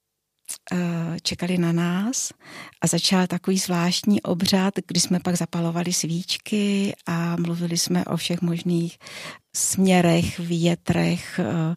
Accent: native